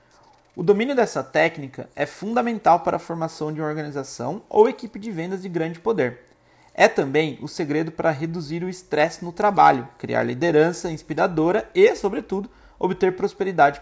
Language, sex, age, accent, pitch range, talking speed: Portuguese, male, 30-49, Brazilian, 145-200 Hz, 155 wpm